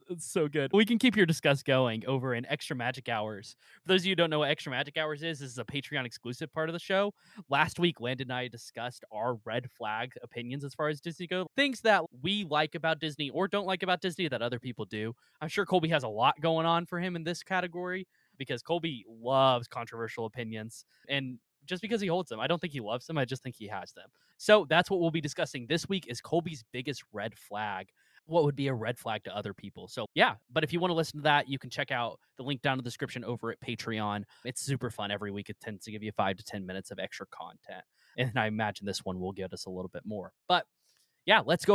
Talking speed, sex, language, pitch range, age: 255 wpm, male, English, 120-180 Hz, 20-39